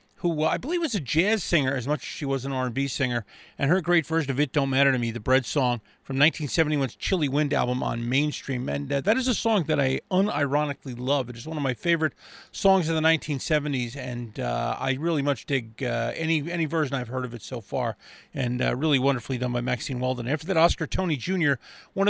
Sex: male